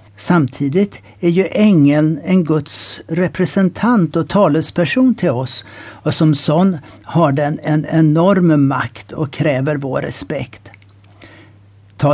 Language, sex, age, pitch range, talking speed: Swedish, male, 60-79, 130-170 Hz, 120 wpm